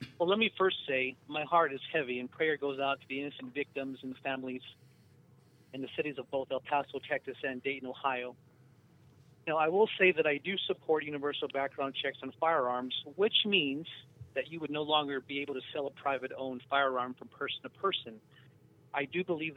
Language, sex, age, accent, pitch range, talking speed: English, male, 40-59, American, 130-155 Hz, 195 wpm